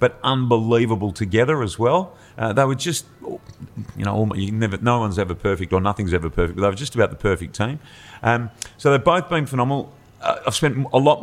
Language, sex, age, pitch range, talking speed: English, male, 40-59, 100-130 Hz, 220 wpm